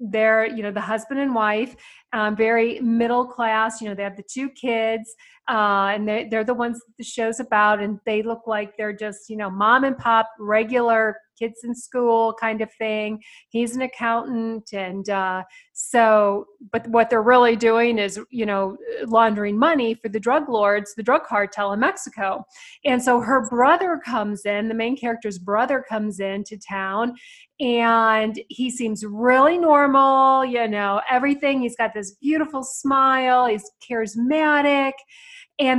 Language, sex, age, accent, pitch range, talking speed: English, female, 40-59, American, 210-255 Hz, 165 wpm